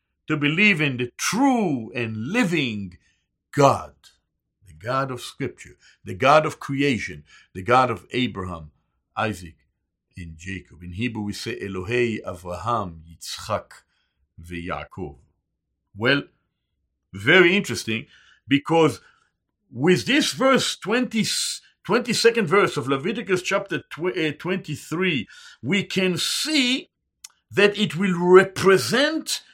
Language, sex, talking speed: English, male, 110 wpm